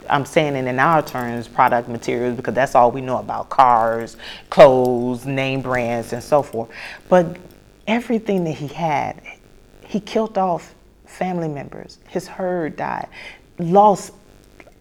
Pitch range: 130-200 Hz